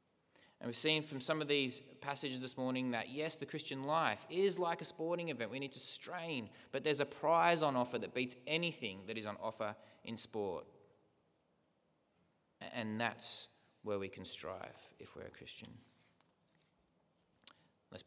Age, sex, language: 20-39, male, English